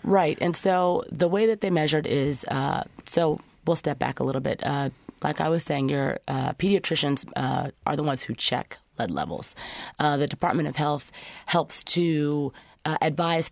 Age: 30-49